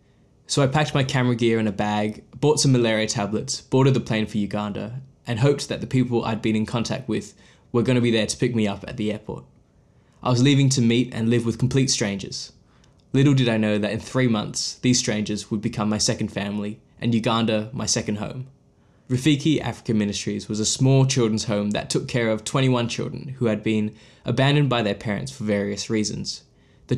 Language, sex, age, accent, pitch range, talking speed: English, male, 10-29, Australian, 105-130 Hz, 210 wpm